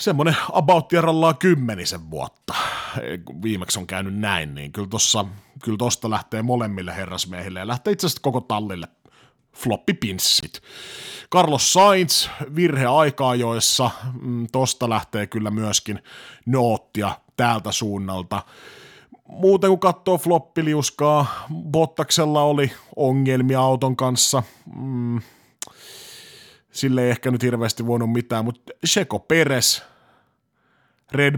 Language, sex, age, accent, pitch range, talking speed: Finnish, male, 30-49, native, 105-145 Hz, 110 wpm